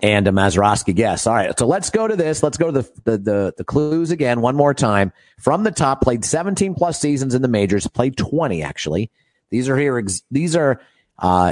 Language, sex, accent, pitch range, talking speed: English, male, American, 110-150 Hz, 220 wpm